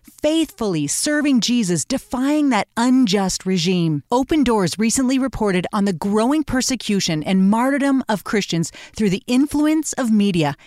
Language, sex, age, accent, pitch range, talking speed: English, female, 30-49, American, 200-265 Hz, 135 wpm